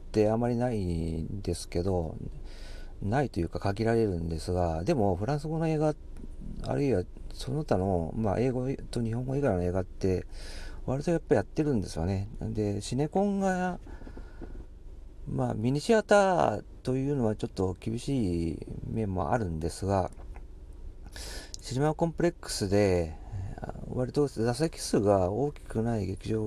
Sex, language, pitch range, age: male, Japanese, 85-125 Hz, 40-59